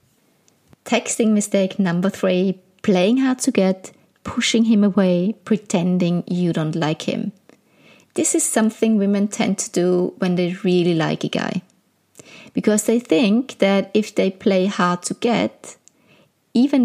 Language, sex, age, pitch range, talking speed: English, female, 20-39, 180-225 Hz, 145 wpm